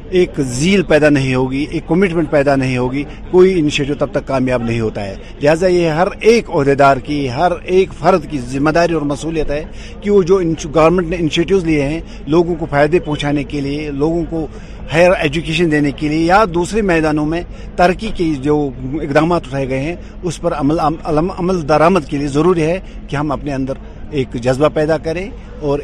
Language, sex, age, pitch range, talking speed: Urdu, male, 50-69, 135-175 Hz, 195 wpm